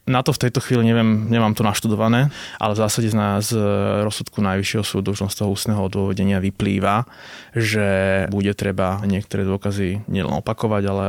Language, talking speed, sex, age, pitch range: Slovak, 175 wpm, male, 20-39, 100-110 Hz